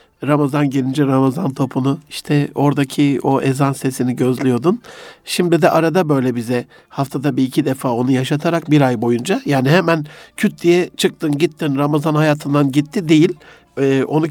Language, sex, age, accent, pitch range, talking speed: Turkish, male, 60-79, native, 135-175 Hz, 150 wpm